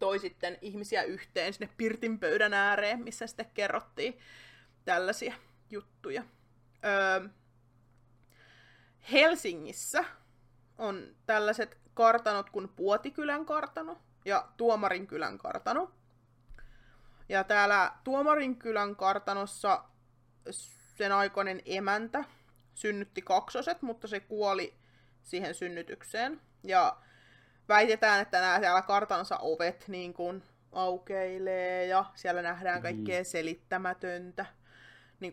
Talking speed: 90 wpm